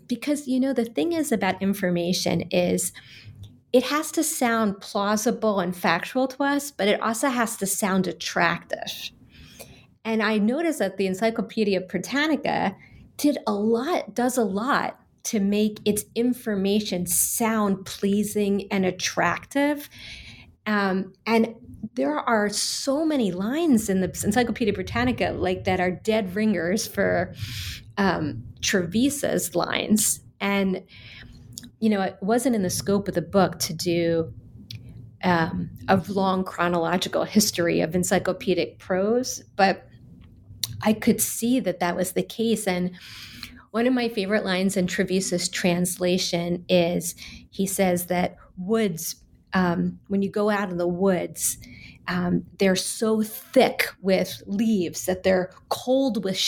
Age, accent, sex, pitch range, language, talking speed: 30-49, American, female, 180-225 Hz, English, 135 wpm